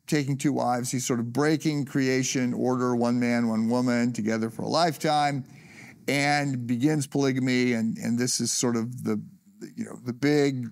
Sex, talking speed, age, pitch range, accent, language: male, 175 wpm, 50-69, 120-145 Hz, American, English